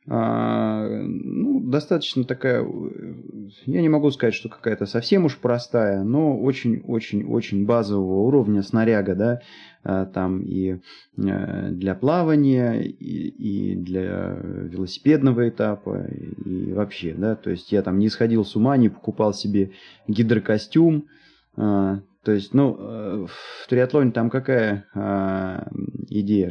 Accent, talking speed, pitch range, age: native, 120 wpm, 105-140 Hz, 20-39